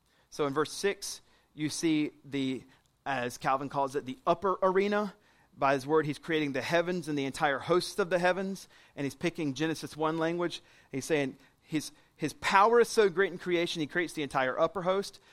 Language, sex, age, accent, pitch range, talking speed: English, male, 30-49, American, 145-185 Hz, 195 wpm